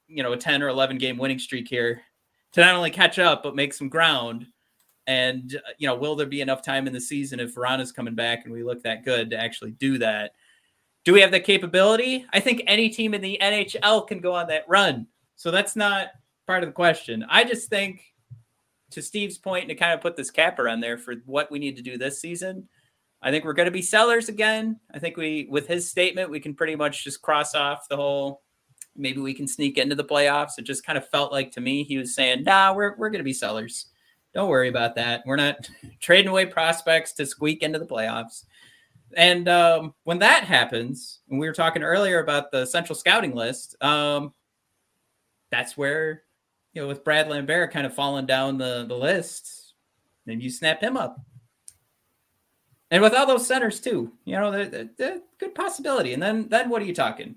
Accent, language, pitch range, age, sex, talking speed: American, English, 130-185 Hz, 30-49, male, 210 wpm